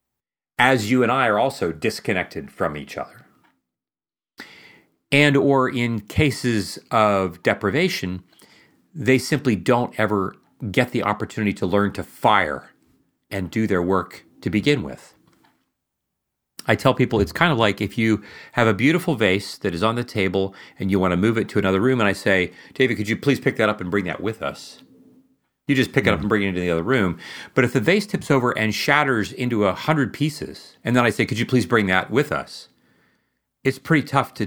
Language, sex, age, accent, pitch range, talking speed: English, male, 40-59, American, 100-135 Hz, 200 wpm